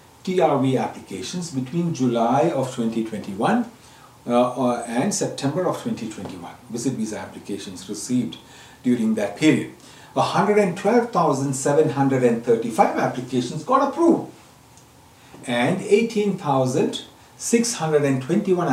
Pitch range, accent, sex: 120-175 Hz, Indian, male